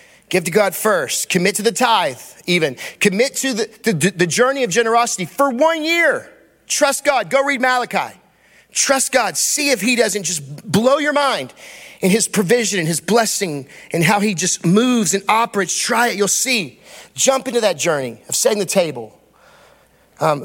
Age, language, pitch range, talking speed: 30-49, English, 150-235 Hz, 180 wpm